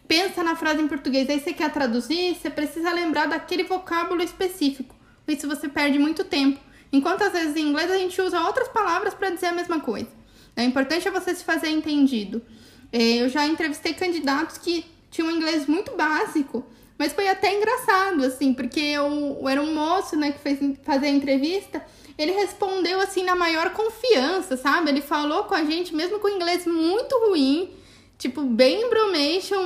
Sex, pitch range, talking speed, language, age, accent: female, 275-365 Hz, 185 wpm, Portuguese, 10-29, Brazilian